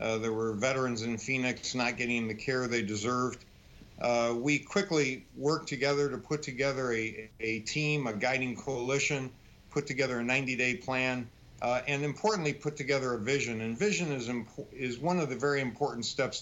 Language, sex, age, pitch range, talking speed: English, male, 50-69, 120-145 Hz, 175 wpm